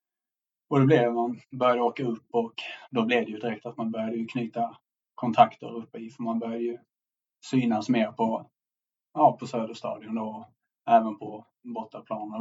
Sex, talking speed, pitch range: male, 155 wpm, 110-130 Hz